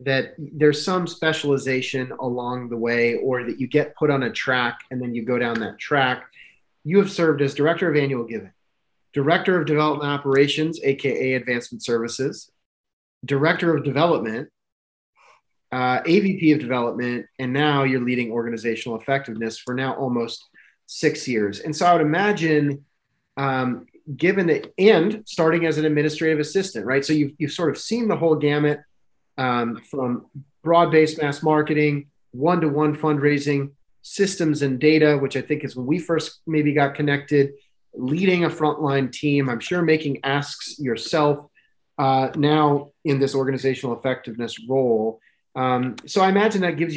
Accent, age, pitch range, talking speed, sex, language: American, 30-49, 130-155 Hz, 155 wpm, male, English